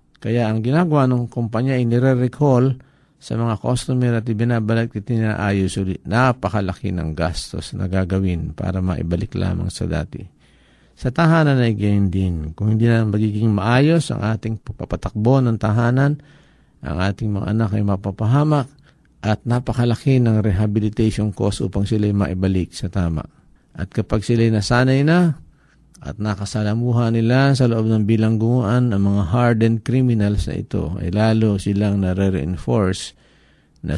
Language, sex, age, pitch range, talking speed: Filipino, male, 50-69, 95-120 Hz, 140 wpm